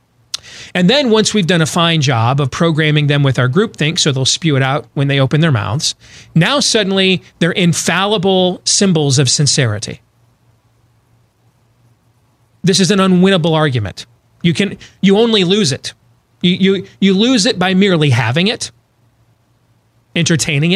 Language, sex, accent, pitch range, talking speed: English, male, American, 120-190 Hz, 150 wpm